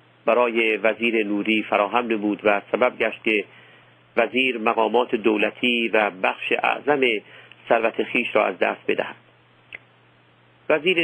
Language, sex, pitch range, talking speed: Persian, male, 105-140 Hz, 120 wpm